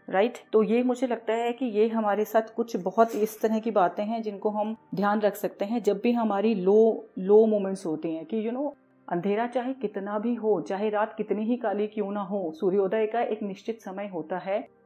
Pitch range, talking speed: 195-230 Hz, 220 wpm